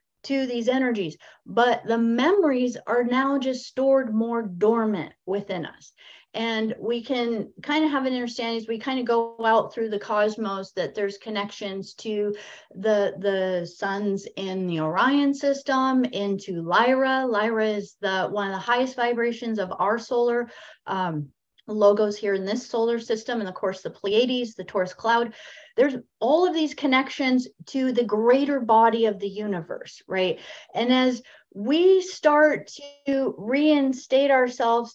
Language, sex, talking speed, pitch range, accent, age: English, female, 155 wpm, 210-265 Hz, American, 30-49